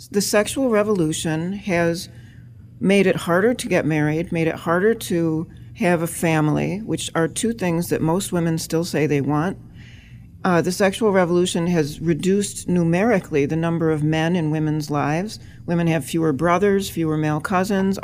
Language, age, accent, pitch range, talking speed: English, 40-59, American, 155-195 Hz, 165 wpm